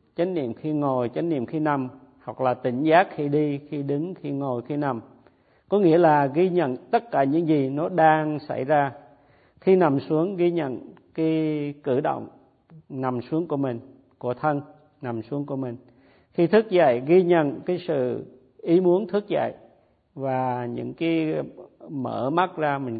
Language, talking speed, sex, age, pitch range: Vietnamese, 180 wpm, male, 50-69, 130-165 Hz